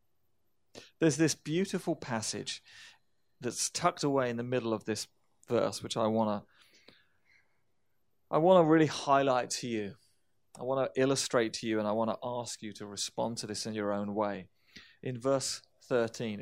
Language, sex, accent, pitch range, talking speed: English, male, British, 110-140 Hz, 170 wpm